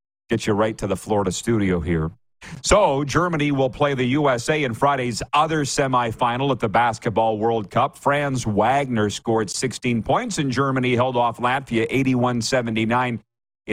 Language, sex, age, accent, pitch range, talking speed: English, male, 50-69, American, 105-130 Hz, 150 wpm